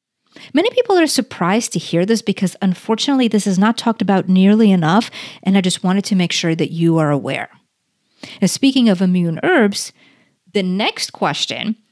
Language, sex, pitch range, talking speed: English, female, 175-220 Hz, 170 wpm